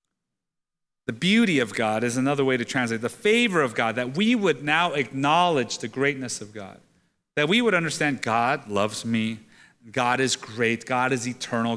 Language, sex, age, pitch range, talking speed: English, male, 30-49, 125-165 Hz, 180 wpm